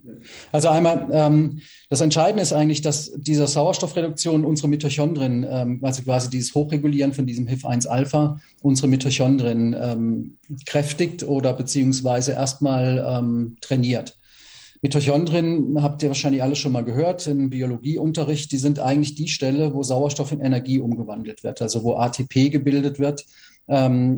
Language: German